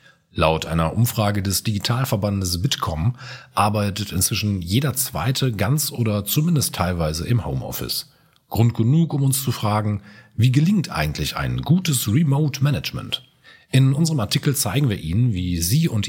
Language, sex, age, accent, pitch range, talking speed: German, male, 40-59, German, 95-130 Hz, 140 wpm